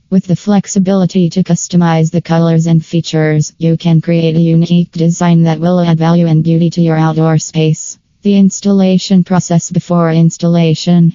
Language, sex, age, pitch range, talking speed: English, female, 20-39, 165-180 Hz, 160 wpm